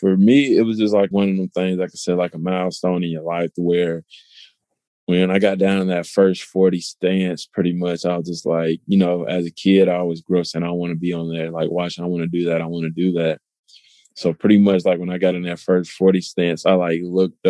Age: 20-39